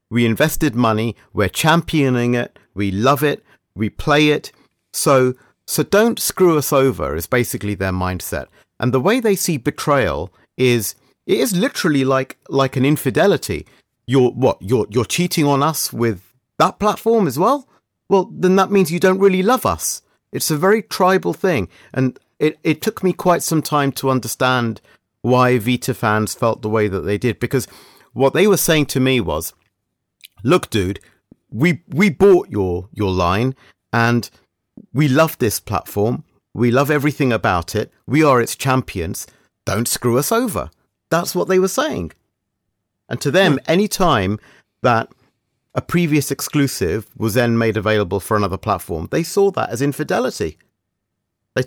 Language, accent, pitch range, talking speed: English, British, 110-160 Hz, 165 wpm